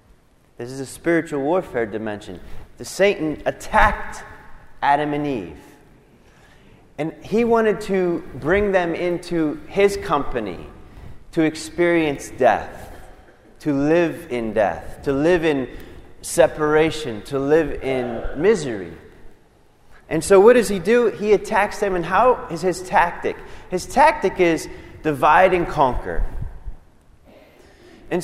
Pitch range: 140-190 Hz